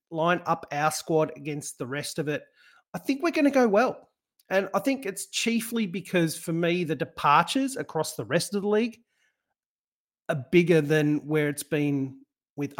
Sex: male